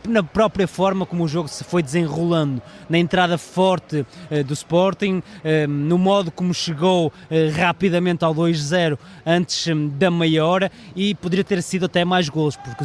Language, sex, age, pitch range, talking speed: Portuguese, male, 20-39, 165-195 Hz, 175 wpm